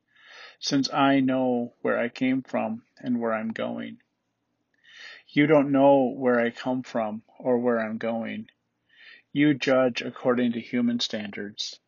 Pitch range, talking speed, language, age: 120-145 Hz, 140 wpm, English, 40-59